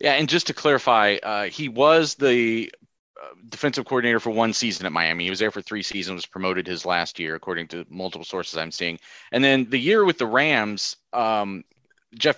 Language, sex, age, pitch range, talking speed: English, male, 30-49, 95-120 Hz, 200 wpm